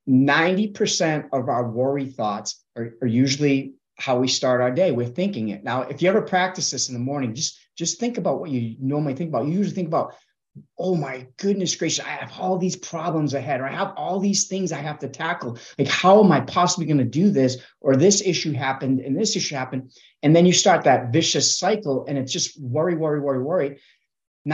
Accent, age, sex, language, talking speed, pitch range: American, 30-49, male, English, 220 wpm, 130-185 Hz